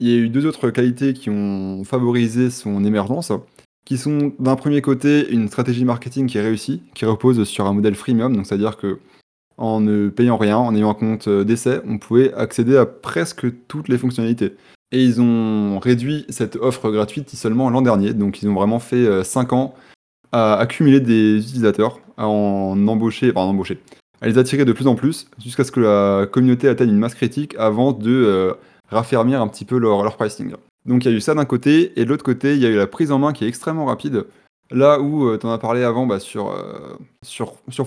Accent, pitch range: French, 110-130 Hz